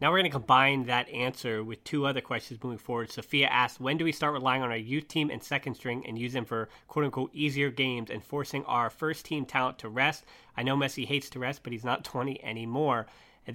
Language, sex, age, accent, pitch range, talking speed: English, male, 30-49, American, 125-150 Hz, 245 wpm